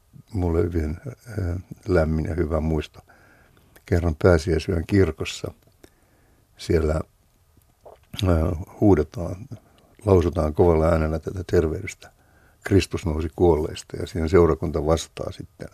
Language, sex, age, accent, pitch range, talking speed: Finnish, male, 60-79, native, 80-100 Hz, 90 wpm